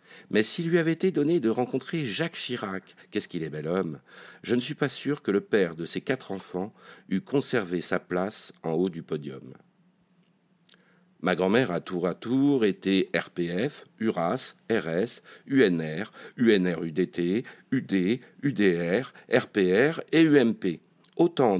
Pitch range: 95-145 Hz